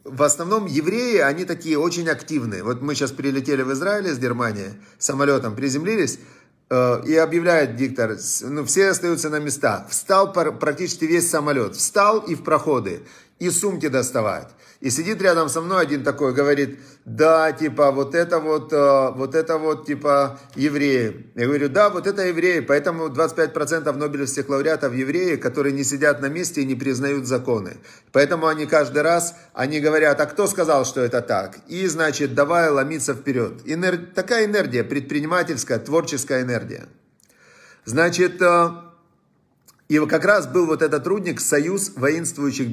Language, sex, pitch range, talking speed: Russian, male, 140-170 Hz, 155 wpm